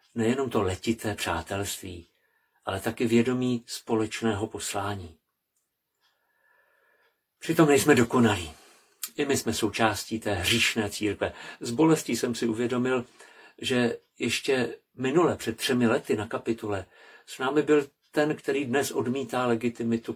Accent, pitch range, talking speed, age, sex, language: native, 100-120 Hz, 120 wpm, 50-69, male, Czech